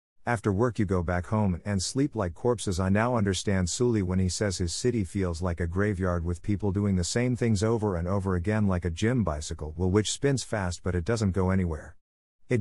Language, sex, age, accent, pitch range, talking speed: English, male, 50-69, American, 90-115 Hz, 225 wpm